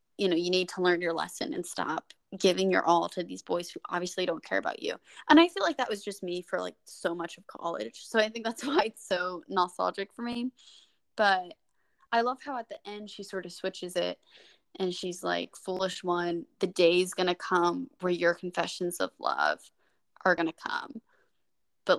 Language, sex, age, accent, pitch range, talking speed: English, female, 10-29, American, 180-225 Hz, 210 wpm